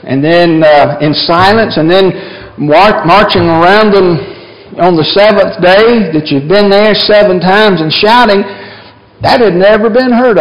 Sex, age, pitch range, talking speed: male, 60-79, 145-200 Hz, 160 wpm